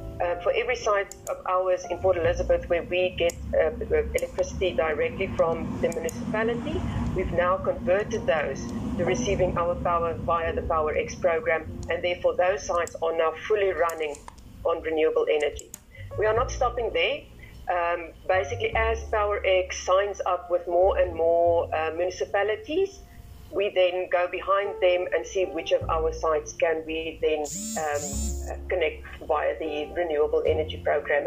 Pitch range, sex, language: 160-200 Hz, female, English